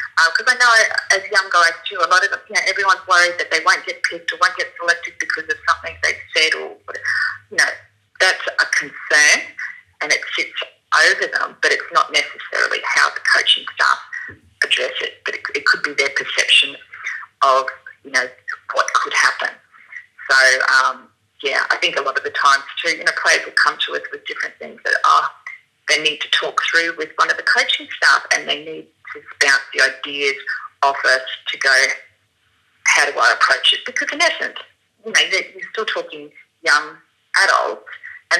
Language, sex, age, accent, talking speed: English, female, 30-49, Australian, 195 wpm